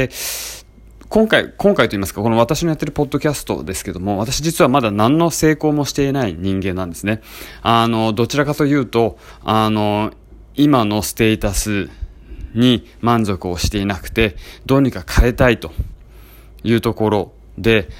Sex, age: male, 20-39